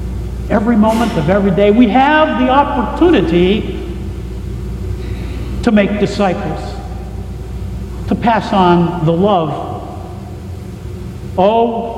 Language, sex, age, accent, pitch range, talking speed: English, male, 60-79, American, 155-235 Hz, 90 wpm